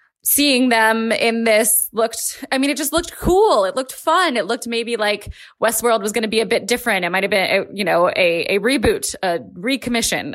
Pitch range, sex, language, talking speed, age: 185-235 Hz, female, English, 215 wpm, 20-39